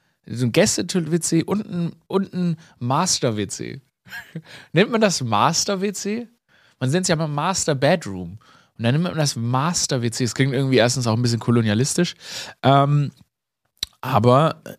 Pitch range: 115-160 Hz